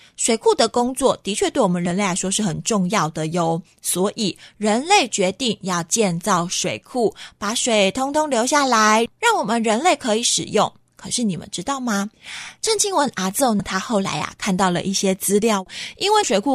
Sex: female